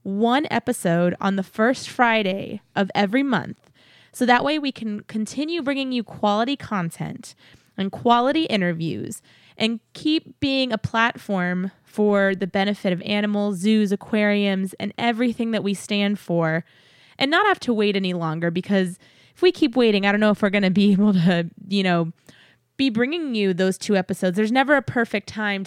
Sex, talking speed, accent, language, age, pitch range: female, 175 wpm, American, English, 20-39, 190-240 Hz